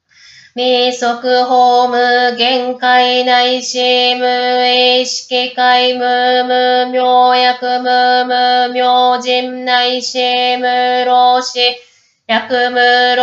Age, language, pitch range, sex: 20-39, Japanese, 245-250 Hz, female